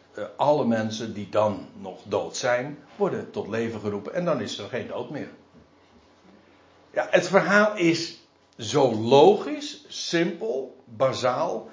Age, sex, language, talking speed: 60-79, male, Dutch, 135 wpm